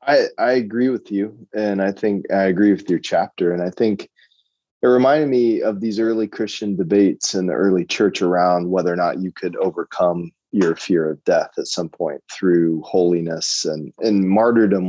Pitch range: 85-110 Hz